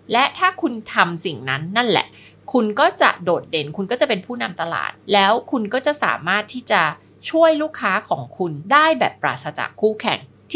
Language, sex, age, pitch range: Thai, female, 20-39, 180-240 Hz